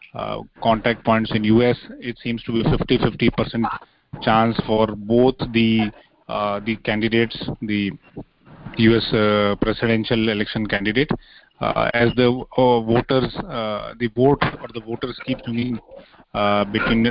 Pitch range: 110-125 Hz